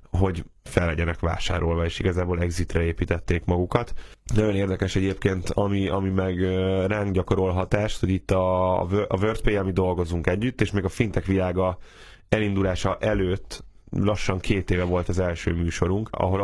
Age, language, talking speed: 10-29, Hungarian, 155 wpm